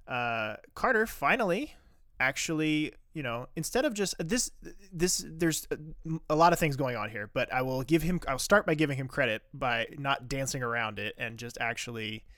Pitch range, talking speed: 115-155 Hz, 185 wpm